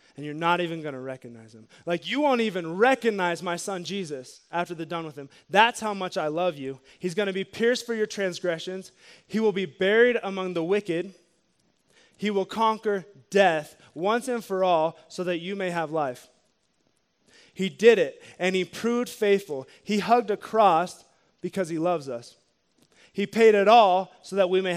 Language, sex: English, male